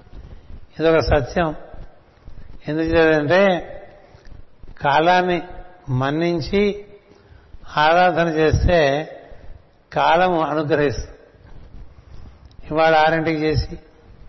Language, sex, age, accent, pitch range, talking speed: Telugu, male, 60-79, native, 130-170 Hz, 55 wpm